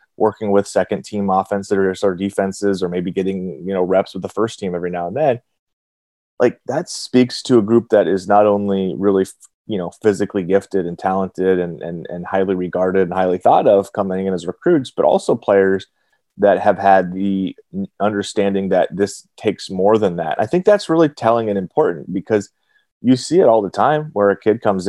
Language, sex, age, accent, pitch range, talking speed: English, male, 30-49, American, 95-105 Hz, 200 wpm